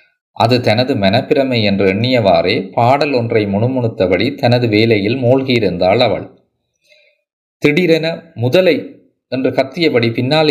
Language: Tamil